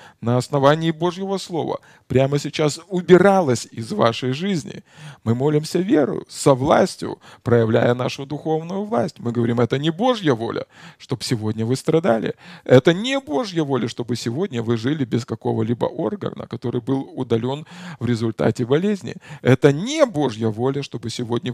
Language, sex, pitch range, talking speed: Russian, male, 120-155 Hz, 140 wpm